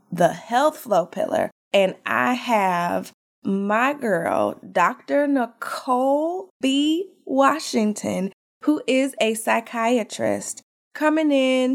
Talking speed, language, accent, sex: 95 wpm, English, American, female